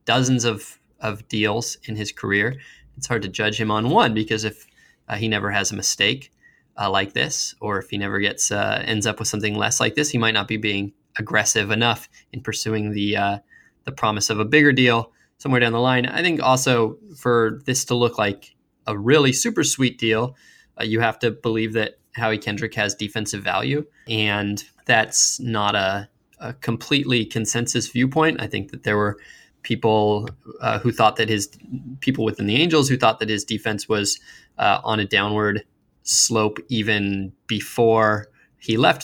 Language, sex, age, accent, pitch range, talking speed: English, male, 20-39, American, 105-125 Hz, 185 wpm